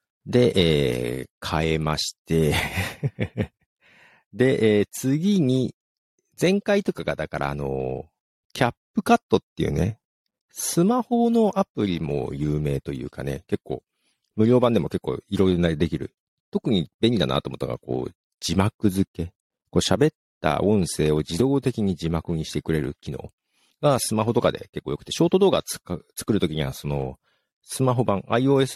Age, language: 50-69, Japanese